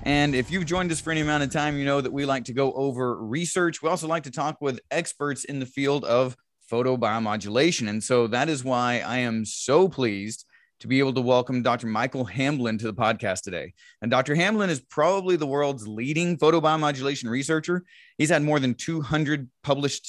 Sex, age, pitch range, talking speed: male, 30-49, 125-160 Hz, 205 wpm